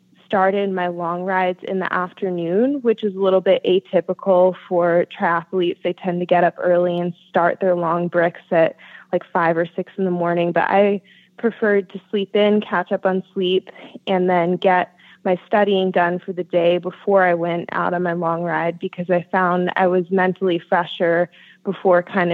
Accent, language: American, English